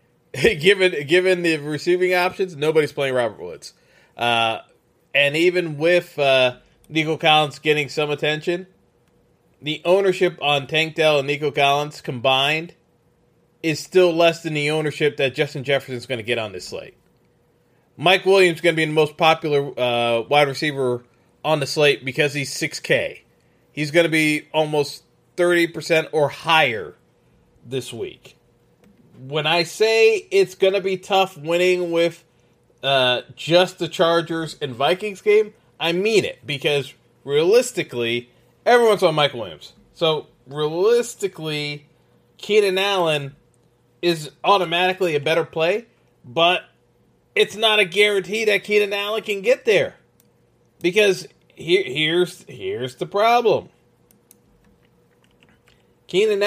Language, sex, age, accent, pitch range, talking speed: English, male, 20-39, American, 145-185 Hz, 130 wpm